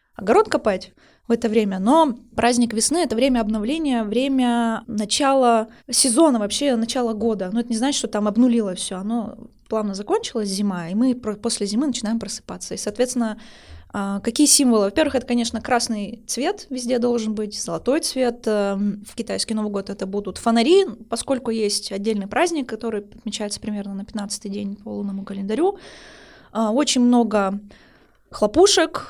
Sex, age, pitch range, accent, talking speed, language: female, 20-39, 205-245 Hz, native, 150 wpm, Russian